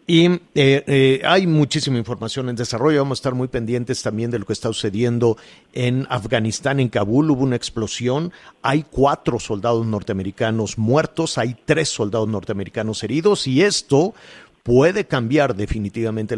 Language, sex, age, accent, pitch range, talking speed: Spanish, male, 50-69, Mexican, 105-135 Hz, 150 wpm